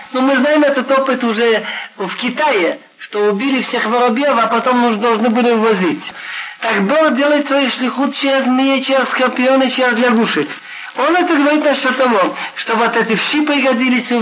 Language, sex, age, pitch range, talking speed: Russian, male, 50-69, 230-275 Hz, 160 wpm